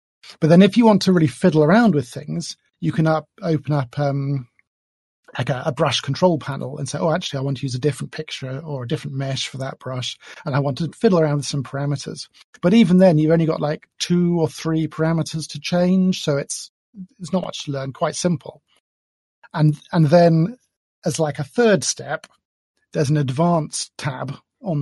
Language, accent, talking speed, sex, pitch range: English, British, 205 wpm, male, 145-175 Hz